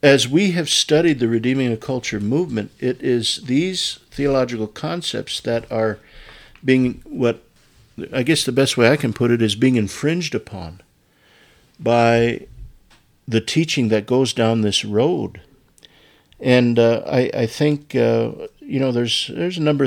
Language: English